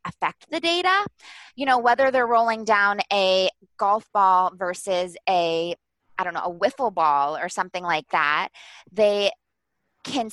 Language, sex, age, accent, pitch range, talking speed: English, female, 20-39, American, 170-225 Hz, 150 wpm